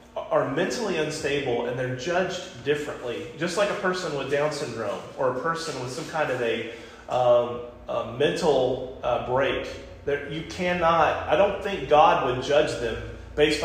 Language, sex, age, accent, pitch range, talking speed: English, male, 30-49, American, 120-180 Hz, 170 wpm